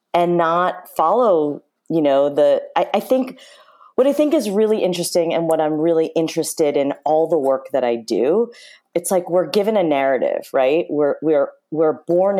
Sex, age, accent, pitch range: female, 30-49, American, 160-210 Hz